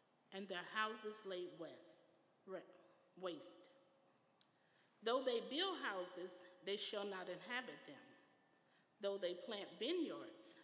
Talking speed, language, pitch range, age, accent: 100 wpm, English, 180-235 Hz, 40-59, American